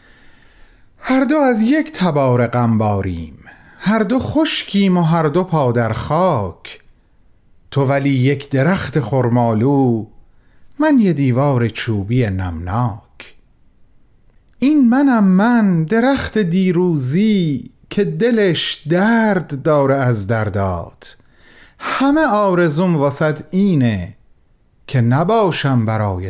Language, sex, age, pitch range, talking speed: Persian, male, 40-59, 115-180 Hz, 95 wpm